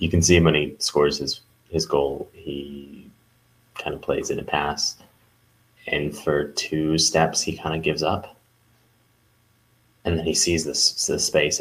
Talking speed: 170 wpm